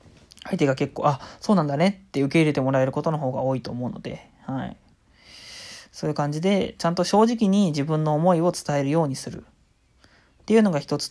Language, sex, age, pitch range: Japanese, male, 20-39, 145-200 Hz